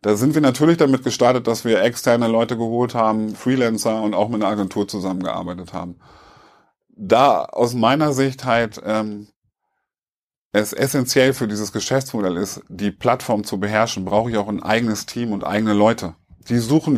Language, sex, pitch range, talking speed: German, male, 105-140 Hz, 165 wpm